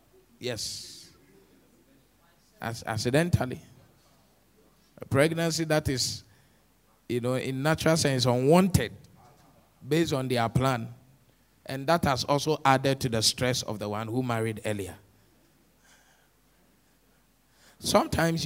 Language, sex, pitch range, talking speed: English, male, 110-145 Hz, 105 wpm